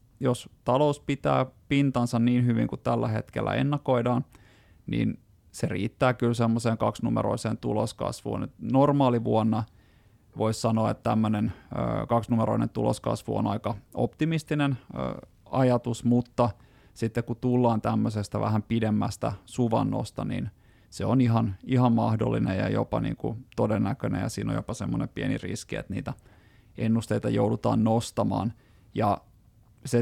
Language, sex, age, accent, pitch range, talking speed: Finnish, male, 30-49, native, 110-125 Hz, 120 wpm